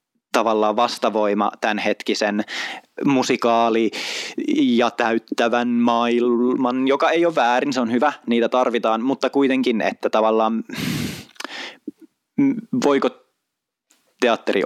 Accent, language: native, Finnish